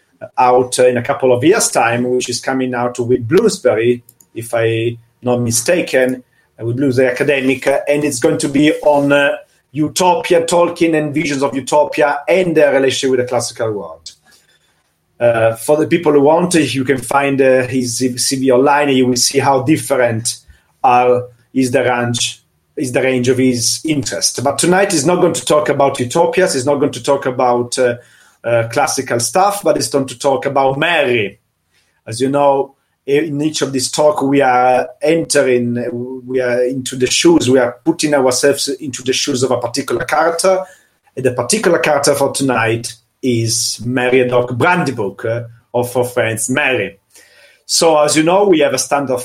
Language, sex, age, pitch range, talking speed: Italian, male, 40-59, 125-150 Hz, 180 wpm